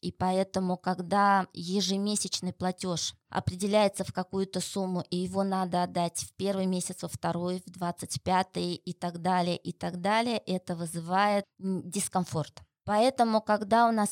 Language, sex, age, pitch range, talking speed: Russian, female, 20-39, 180-210 Hz, 145 wpm